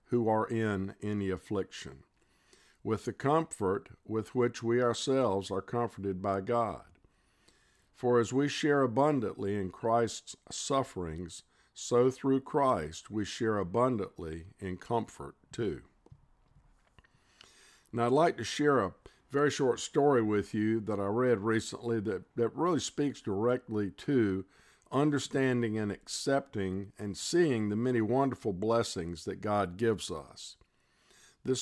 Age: 50-69